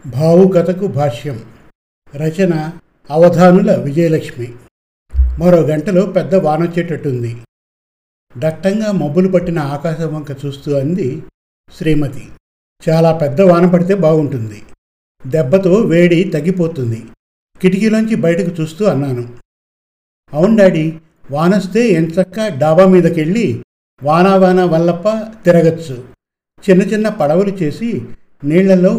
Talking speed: 85 wpm